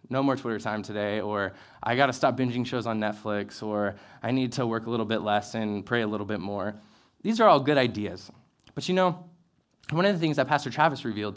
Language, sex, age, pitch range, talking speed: English, male, 20-39, 110-140 Hz, 240 wpm